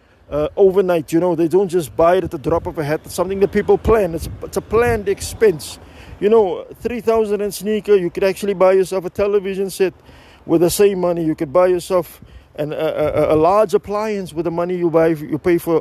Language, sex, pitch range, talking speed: English, male, 165-200 Hz, 230 wpm